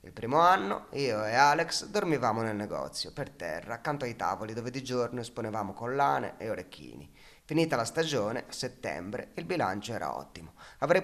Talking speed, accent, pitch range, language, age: 170 wpm, native, 100-130 Hz, Italian, 30-49